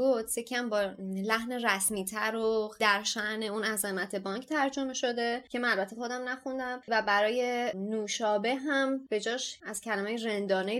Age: 20-39